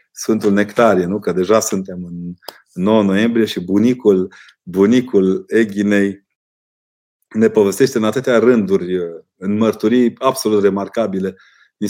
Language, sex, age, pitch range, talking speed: Romanian, male, 30-49, 100-115 Hz, 115 wpm